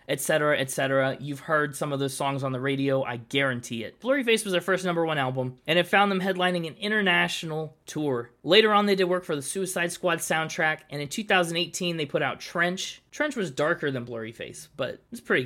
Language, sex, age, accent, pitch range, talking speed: English, male, 20-39, American, 135-185 Hz, 210 wpm